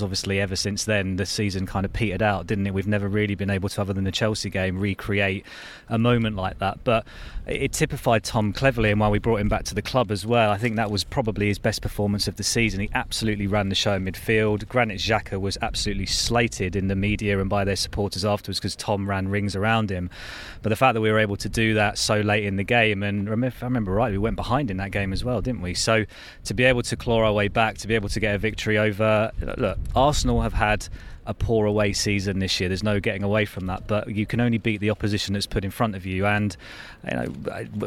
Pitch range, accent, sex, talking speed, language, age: 100-115 Hz, British, male, 255 wpm, English, 30-49